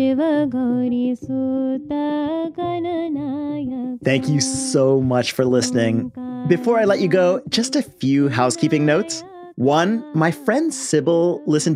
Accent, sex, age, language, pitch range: American, male, 30-49, English, 135-225 Hz